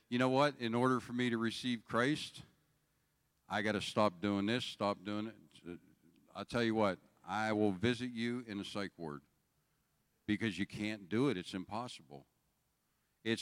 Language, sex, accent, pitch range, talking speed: English, male, American, 95-135 Hz, 175 wpm